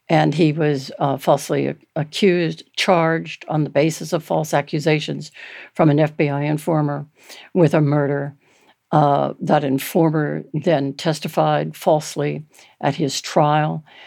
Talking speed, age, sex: 125 wpm, 60-79, female